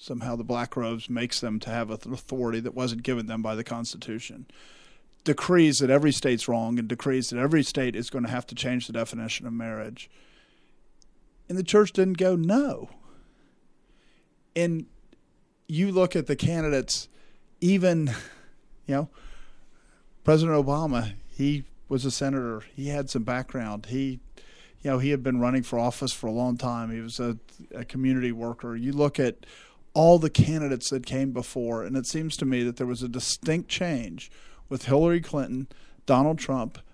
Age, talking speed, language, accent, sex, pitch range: 40-59, 170 wpm, English, American, male, 120-150 Hz